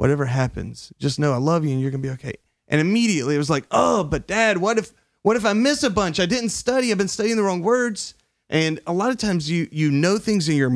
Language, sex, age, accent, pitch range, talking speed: English, male, 30-49, American, 130-165 Hz, 275 wpm